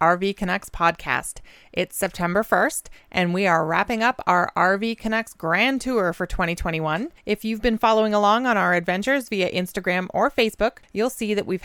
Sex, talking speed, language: female, 175 wpm, English